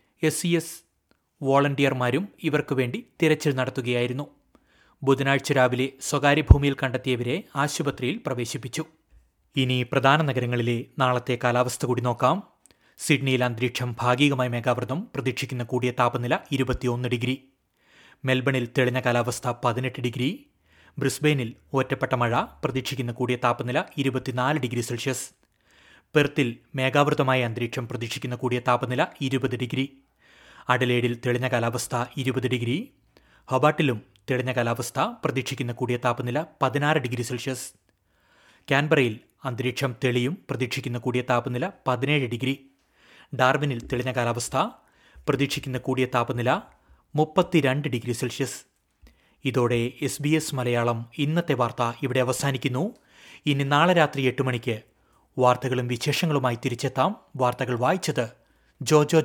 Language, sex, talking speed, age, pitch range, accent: Malayalam, male, 100 wpm, 30-49, 125-140 Hz, native